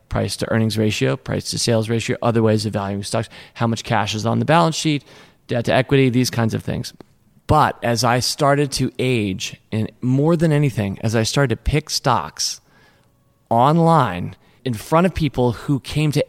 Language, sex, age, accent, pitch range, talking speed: English, male, 30-49, American, 110-140 Hz, 170 wpm